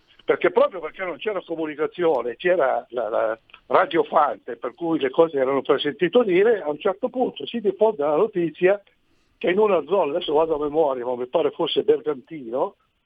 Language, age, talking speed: Italian, 60-79, 175 wpm